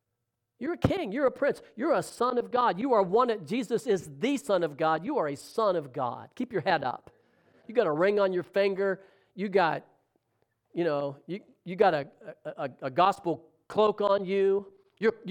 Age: 50-69